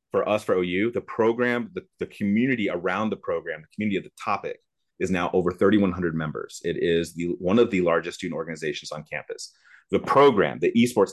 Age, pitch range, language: 30-49, 85-125 Hz, English